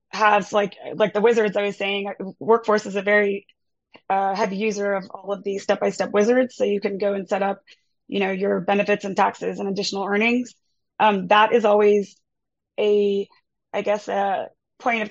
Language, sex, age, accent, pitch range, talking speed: English, female, 20-39, American, 200-215 Hz, 185 wpm